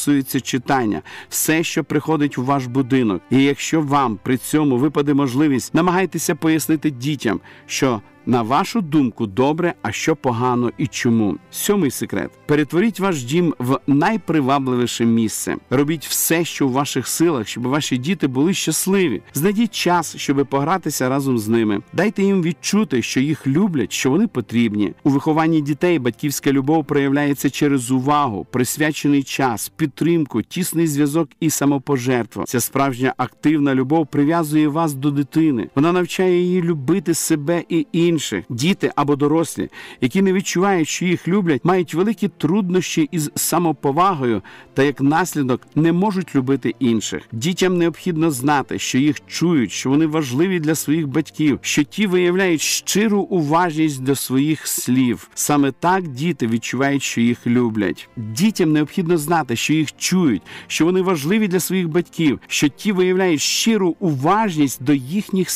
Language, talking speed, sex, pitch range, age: Ukrainian, 145 wpm, male, 135-170 Hz, 50-69